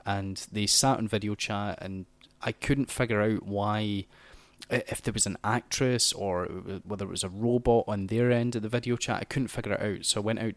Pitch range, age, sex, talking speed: 95-110 Hz, 20-39, male, 220 wpm